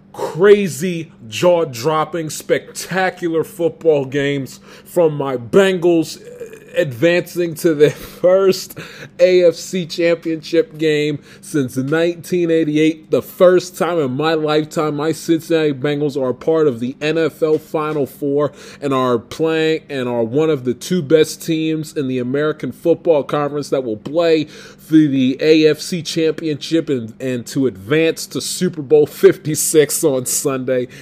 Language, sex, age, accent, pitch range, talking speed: English, male, 20-39, American, 135-165 Hz, 130 wpm